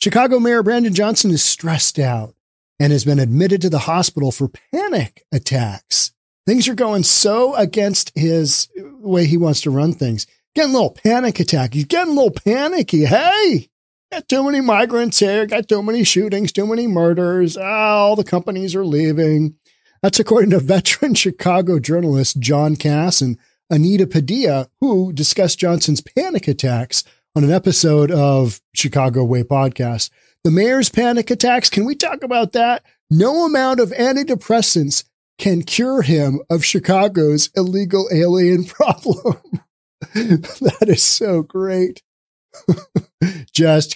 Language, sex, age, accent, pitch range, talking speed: English, male, 40-59, American, 145-210 Hz, 145 wpm